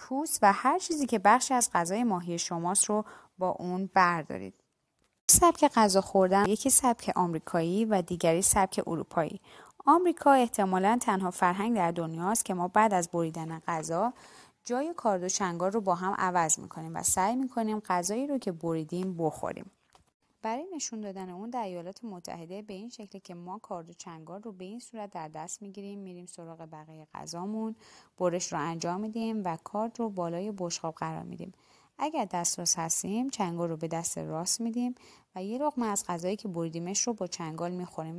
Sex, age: female, 20-39